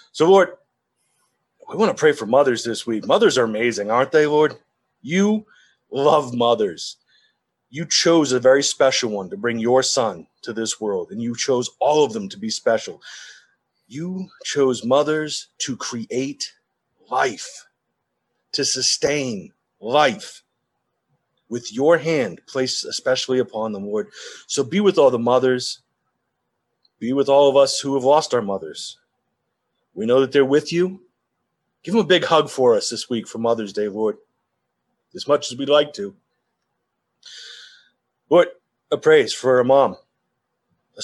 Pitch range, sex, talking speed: 120-170 Hz, male, 155 wpm